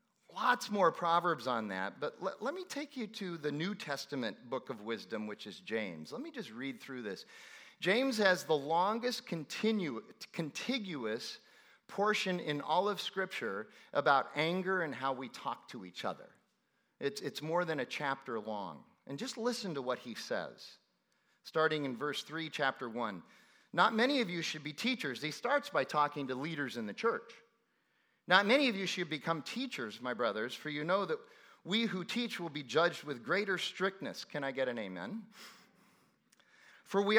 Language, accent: English, American